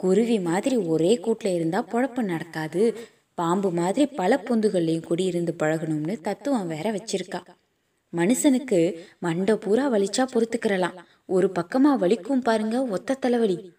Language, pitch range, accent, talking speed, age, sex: Tamil, 180-240 Hz, native, 115 wpm, 20-39, female